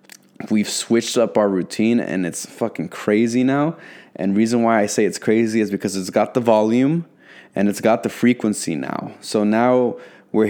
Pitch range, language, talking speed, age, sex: 100-115 Hz, English, 190 wpm, 20-39, male